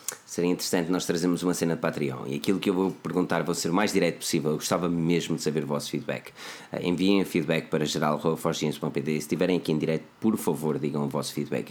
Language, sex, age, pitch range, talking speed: Portuguese, male, 20-39, 80-95 Hz, 225 wpm